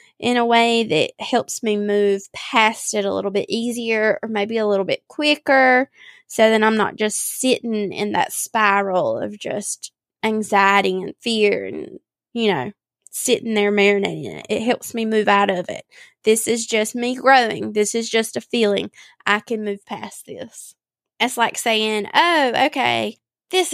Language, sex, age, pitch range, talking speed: English, female, 20-39, 215-260 Hz, 170 wpm